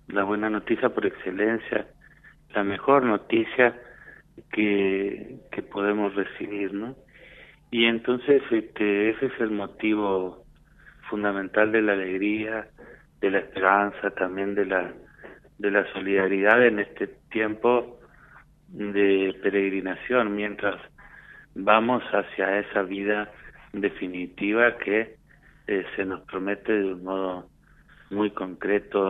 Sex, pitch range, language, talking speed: male, 95-110 Hz, Spanish, 110 wpm